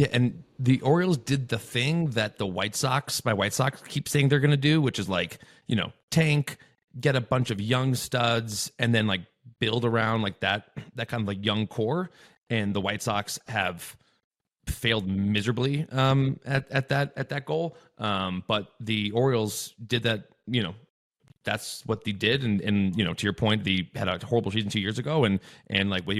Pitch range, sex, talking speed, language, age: 100-125 Hz, male, 205 wpm, English, 30-49